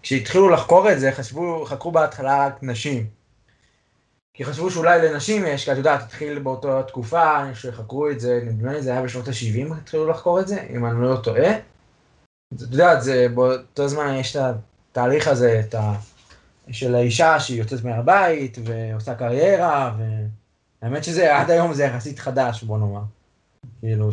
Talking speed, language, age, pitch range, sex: 160 wpm, Hebrew, 20-39, 115-150 Hz, male